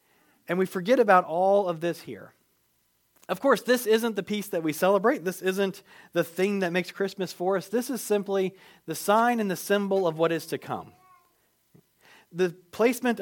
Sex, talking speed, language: male, 185 wpm, English